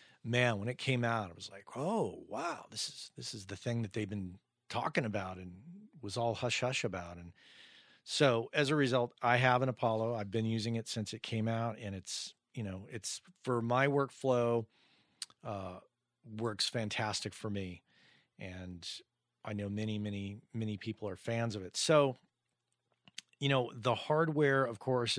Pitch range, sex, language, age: 100-125 Hz, male, English, 40-59